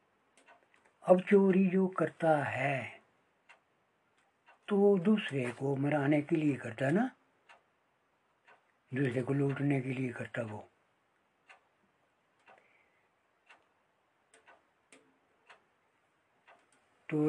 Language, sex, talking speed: Hindi, male, 75 wpm